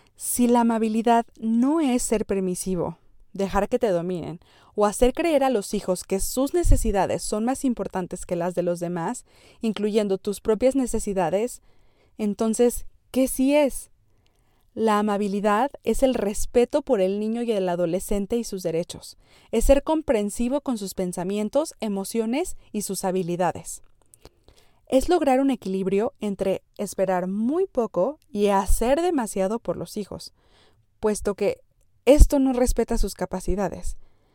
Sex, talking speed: female, 140 wpm